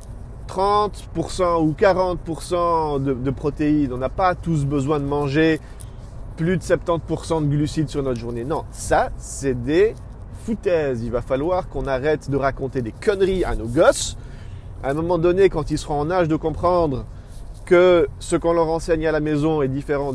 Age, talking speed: 30-49, 175 wpm